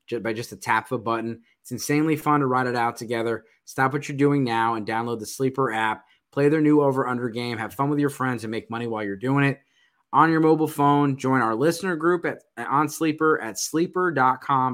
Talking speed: 230 wpm